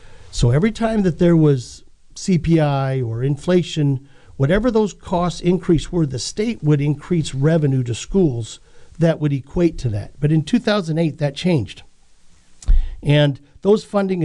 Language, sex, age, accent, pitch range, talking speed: English, male, 50-69, American, 135-185 Hz, 145 wpm